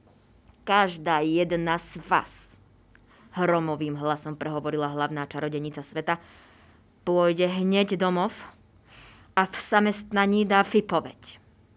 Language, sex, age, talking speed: Slovak, female, 30-49, 90 wpm